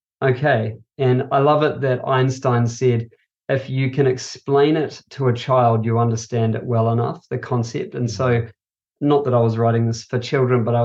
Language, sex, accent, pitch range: English, male, Australian, 120-135 Hz